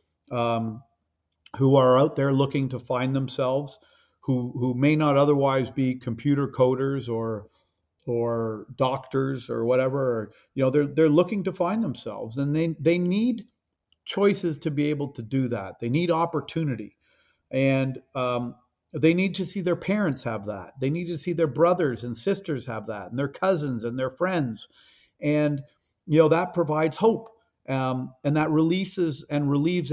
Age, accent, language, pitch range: 50-69, American, English, 130-170 Hz